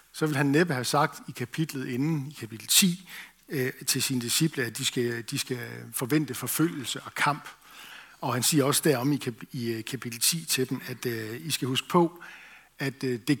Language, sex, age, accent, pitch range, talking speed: Danish, male, 60-79, native, 130-165 Hz, 175 wpm